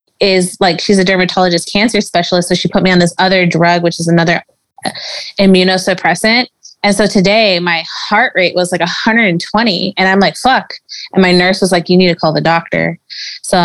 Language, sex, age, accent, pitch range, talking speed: English, female, 20-39, American, 175-220 Hz, 195 wpm